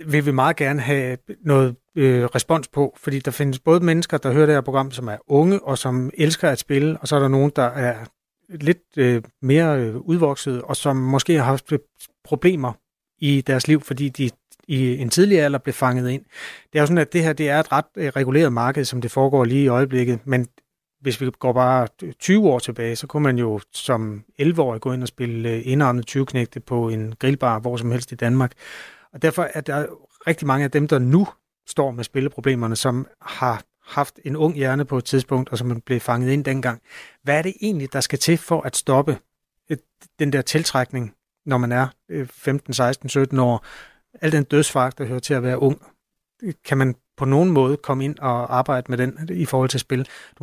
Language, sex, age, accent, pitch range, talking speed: Danish, male, 30-49, native, 125-150 Hz, 205 wpm